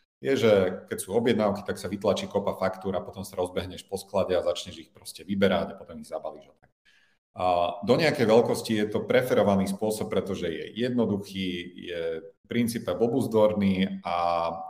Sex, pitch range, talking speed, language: male, 95-110 Hz, 155 wpm, Slovak